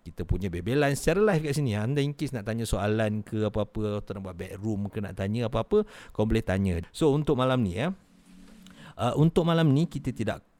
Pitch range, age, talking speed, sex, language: 100-135 Hz, 50-69, 195 wpm, male, Malay